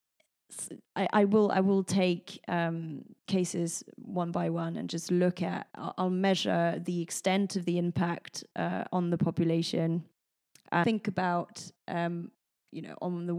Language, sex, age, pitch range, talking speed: English, female, 20-39, 170-185 Hz, 155 wpm